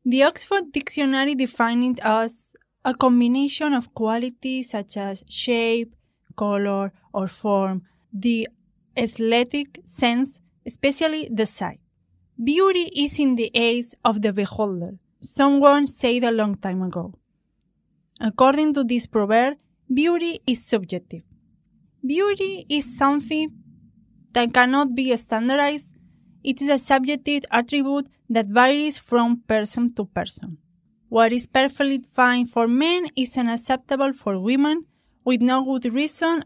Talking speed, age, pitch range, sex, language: 125 wpm, 20-39, 225-280 Hz, female, English